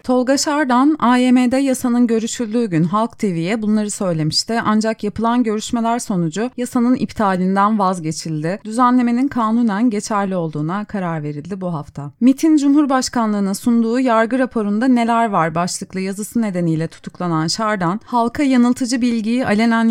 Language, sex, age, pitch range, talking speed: Turkish, female, 30-49, 185-245 Hz, 125 wpm